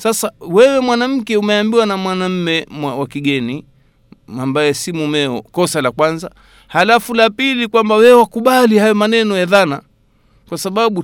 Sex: male